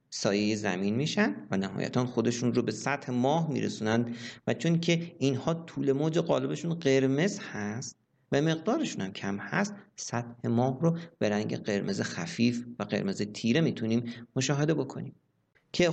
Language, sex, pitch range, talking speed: Persian, male, 115-165 Hz, 145 wpm